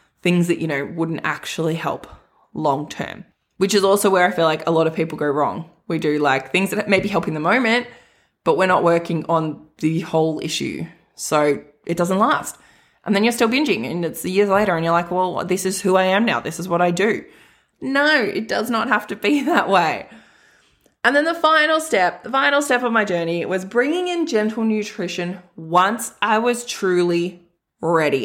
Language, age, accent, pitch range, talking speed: English, 20-39, Australian, 170-230 Hz, 210 wpm